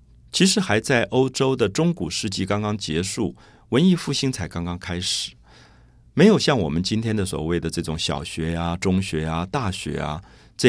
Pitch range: 85-135 Hz